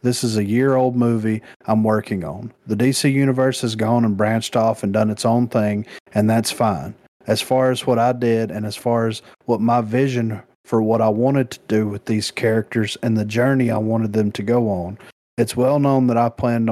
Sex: male